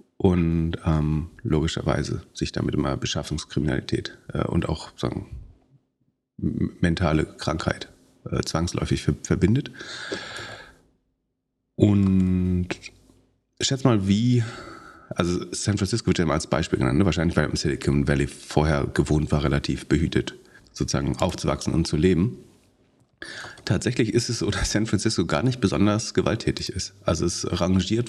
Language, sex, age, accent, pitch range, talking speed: German, male, 40-59, German, 85-105 Hz, 130 wpm